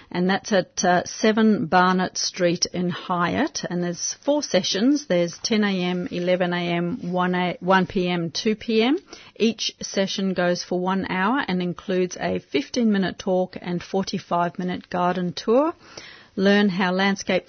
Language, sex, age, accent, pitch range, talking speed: English, female, 40-59, Australian, 175-200 Hz, 145 wpm